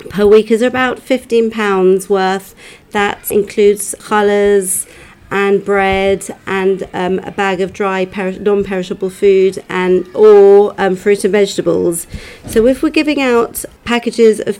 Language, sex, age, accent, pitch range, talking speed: English, female, 40-59, British, 195-220 Hz, 130 wpm